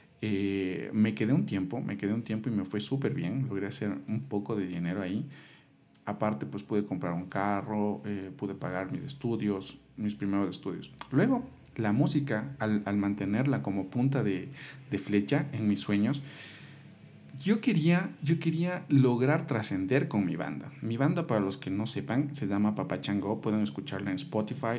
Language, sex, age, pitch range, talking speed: Spanish, male, 40-59, 100-140 Hz, 175 wpm